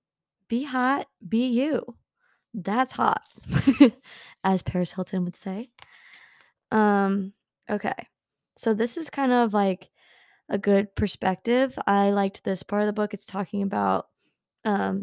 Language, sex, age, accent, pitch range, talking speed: English, female, 20-39, American, 195-235 Hz, 130 wpm